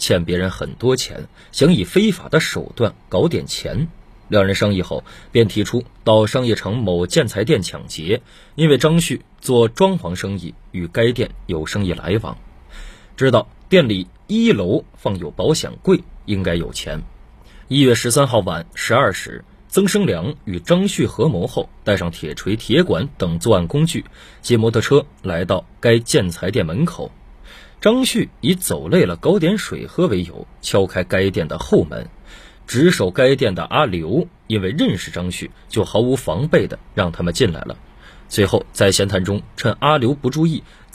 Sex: male